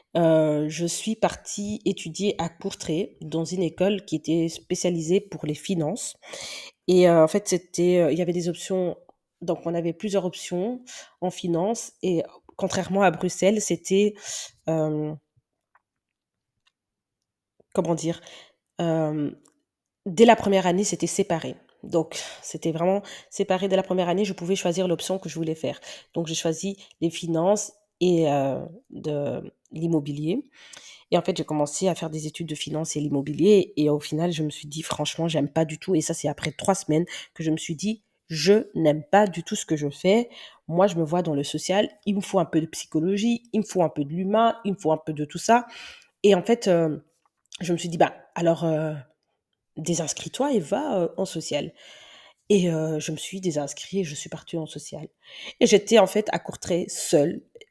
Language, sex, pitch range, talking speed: French, female, 160-195 Hz, 190 wpm